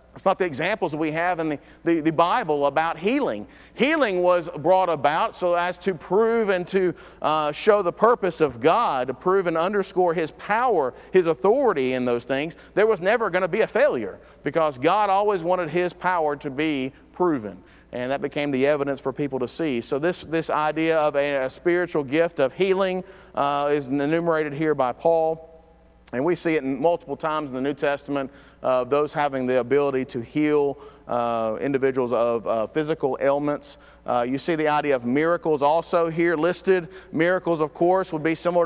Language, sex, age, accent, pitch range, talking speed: English, male, 40-59, American, 140-175 Hz, 190 wpm